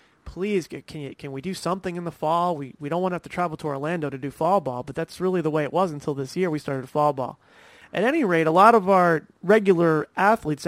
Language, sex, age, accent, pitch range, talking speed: English, male, 30-49, American, 150-200 Hz, 265 wpm